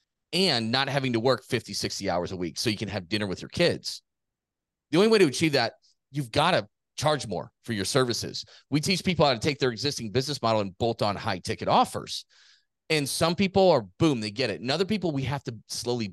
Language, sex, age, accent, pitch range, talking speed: English, male, 30-49, American, 105-140 Hz, 235 wpm